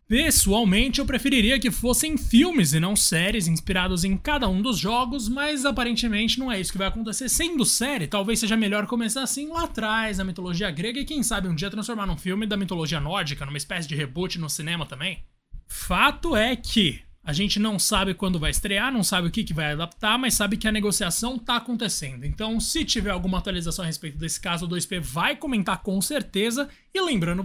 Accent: Brazilian